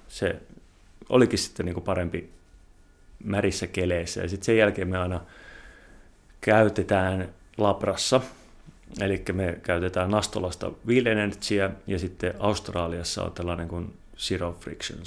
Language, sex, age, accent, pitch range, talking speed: Finnish, male, 30-49, native, 85-100 Hz, 120 wpm